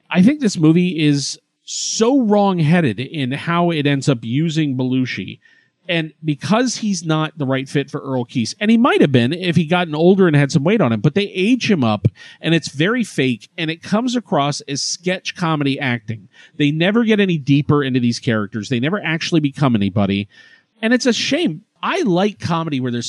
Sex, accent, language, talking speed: male, American, English, 205 wpm